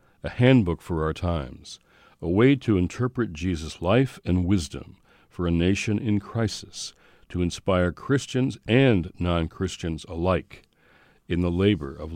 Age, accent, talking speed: 60-79, American, 140 wpm